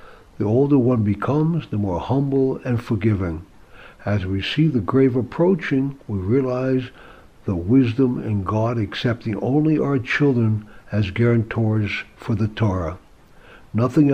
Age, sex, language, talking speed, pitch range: 60-79, male, English, 130 wpm, 105-135 Hz